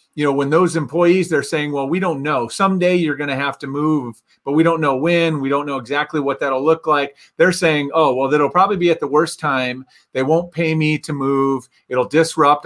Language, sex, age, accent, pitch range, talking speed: English, male, 40-59, American, 130-160 Hz, 235 wpm